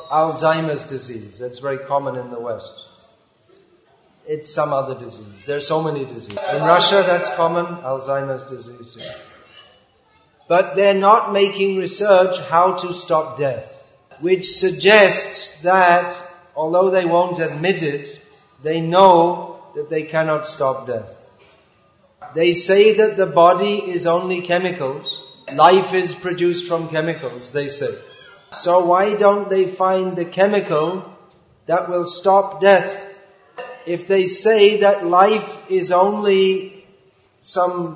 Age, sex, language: 40-59, male, English